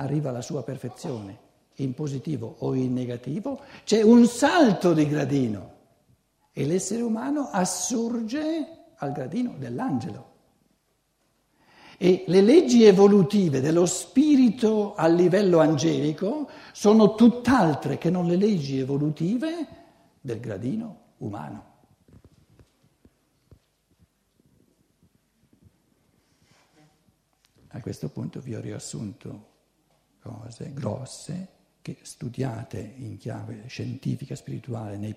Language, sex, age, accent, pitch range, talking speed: Italian, male, 60-79, native, 125-195 Hz, 95 wpm